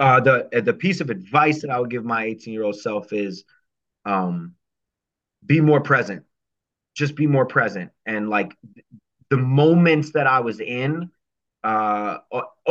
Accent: American